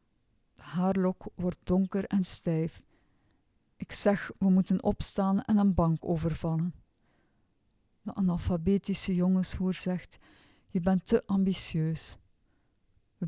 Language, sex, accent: Dutch, female, Dutch